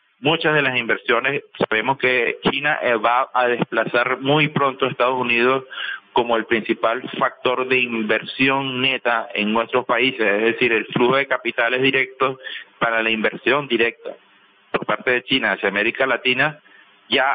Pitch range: 120-145 Hz